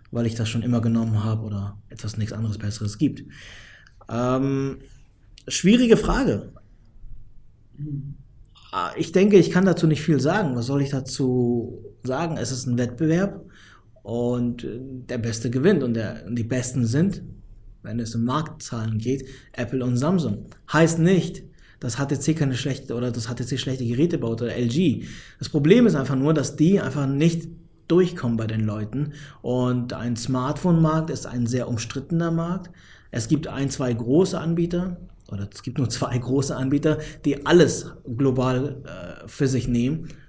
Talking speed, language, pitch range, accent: 150 wpm, German, 115-145 Hz, German